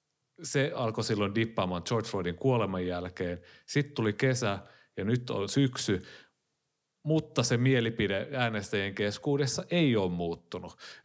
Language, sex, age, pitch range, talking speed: Finnish, male, 30-49, 95-115 Hz, 125 wpm